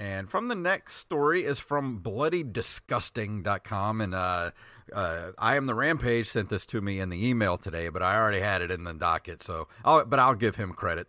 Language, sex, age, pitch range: English, male, 40-59, 95-135 Hz